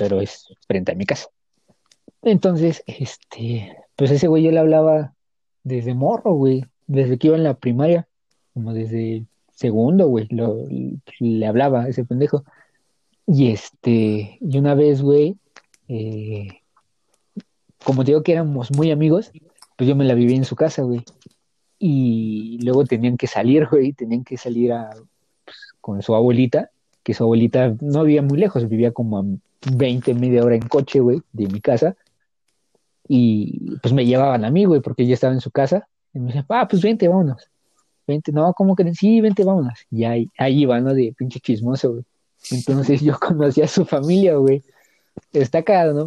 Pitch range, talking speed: 120-145 Hz, 170 wpm